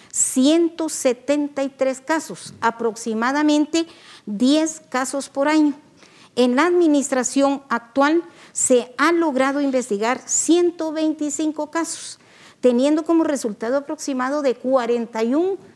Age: 50-69